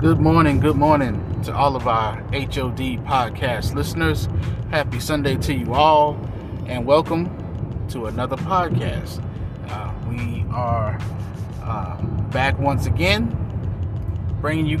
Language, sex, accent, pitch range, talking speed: English, male, American, 100-130 Hz, 120 wpm